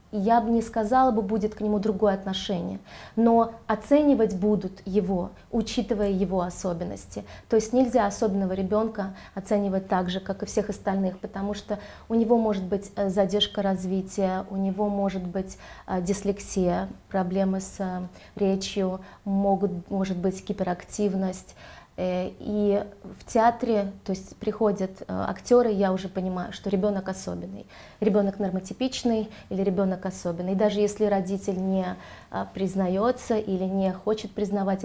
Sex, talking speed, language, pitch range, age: female, 130 wpm, Russian, 190-210 Hz, 30-49